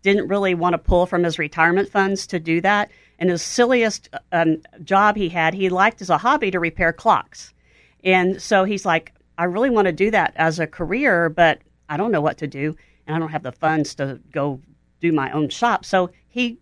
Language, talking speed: English, 220 wpm